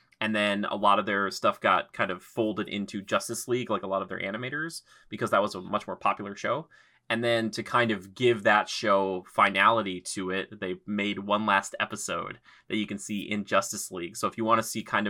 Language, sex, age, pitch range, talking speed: English, male, 20-39, 100-125 Hz, 230 wpm